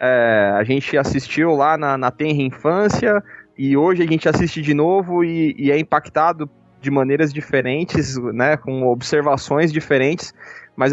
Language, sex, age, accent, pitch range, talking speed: Portuguese, male, 20-39, Brazilian, 130-155 Hz, 155 wpm